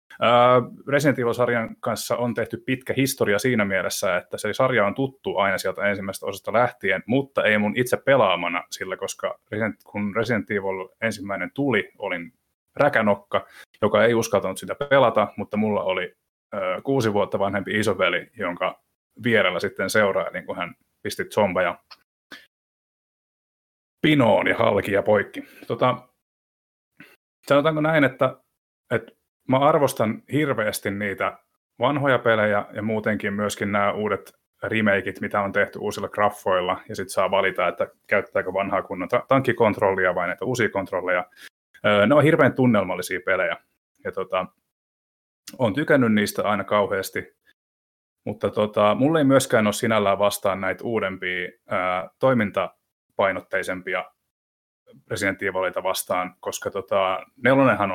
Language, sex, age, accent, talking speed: Finnish, male, 30-49, native, 125 wpm